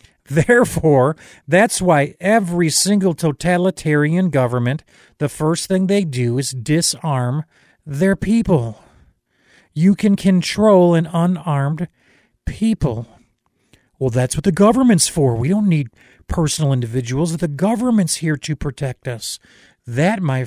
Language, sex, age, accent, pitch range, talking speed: English, male, 40-59, American, 130-170 Hz, 120 wpm